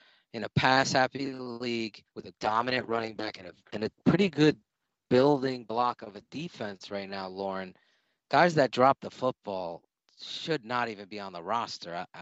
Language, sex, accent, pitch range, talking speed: English, male, American, 110-140 Hz, 170 wpm